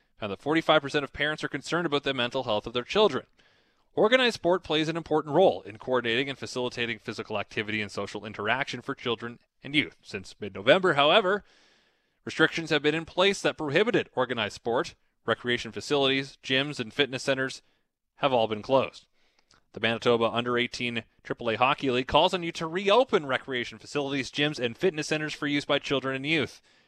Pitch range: 125-165 Hz